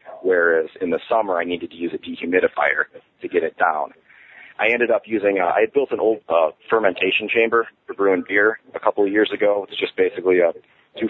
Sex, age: male, 30-49